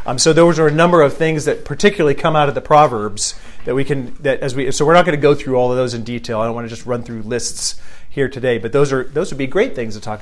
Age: 40-59